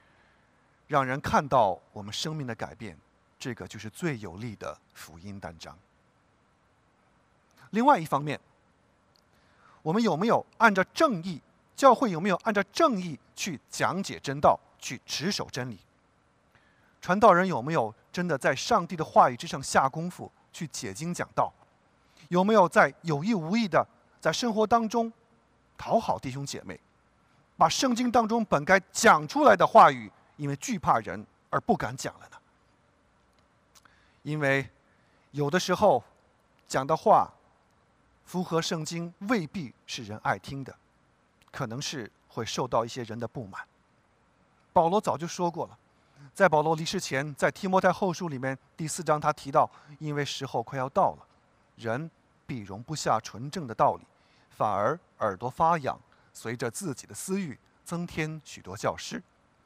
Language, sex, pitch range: English, male, 125-185 Hz